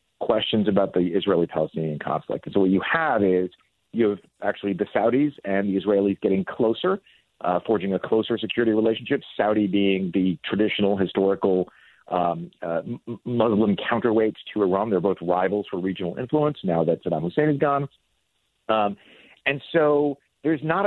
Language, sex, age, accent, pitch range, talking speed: English, male, 40-59, American, 100-135 Hz, 155 wpm